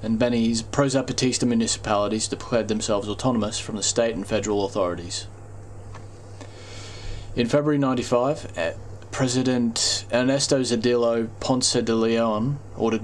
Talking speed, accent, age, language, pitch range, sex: 105 wpm, Australian, 20-39, English, 100-120 Hz, male